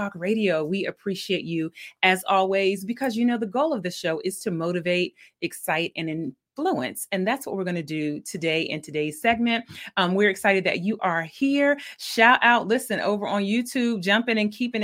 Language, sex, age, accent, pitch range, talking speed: English, female, 30-49, American, 190-240 Hz, 195 wpm